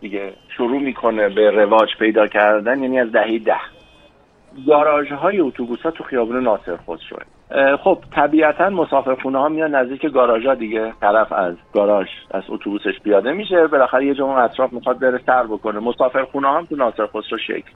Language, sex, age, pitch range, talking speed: Persian, male, 50-69, 100-135 Hz, 160 wpm